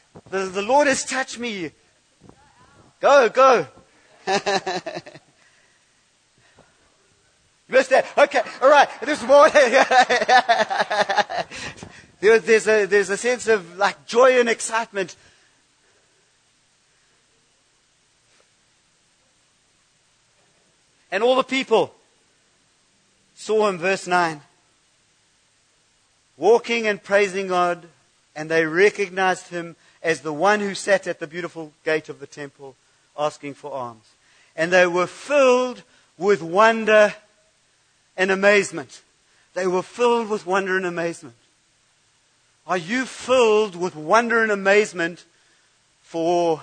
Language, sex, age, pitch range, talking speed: English, male, 50-69, 170-210 Hz, 105 wpm